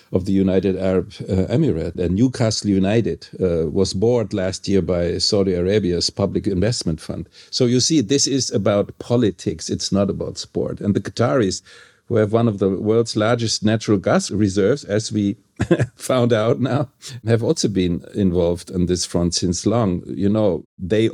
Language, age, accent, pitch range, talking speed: English, 50-69, German, 95-120 Hz, 175 wpm